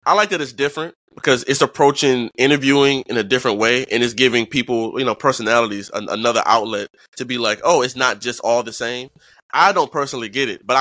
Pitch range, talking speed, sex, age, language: 120-160 Hz, 210 wpm, male, 20-39, English